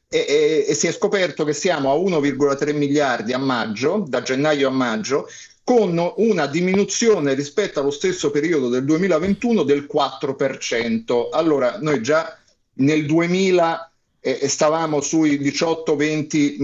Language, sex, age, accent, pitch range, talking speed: Italian, male, 50-69, native, 140-165 Hz, 135 wpm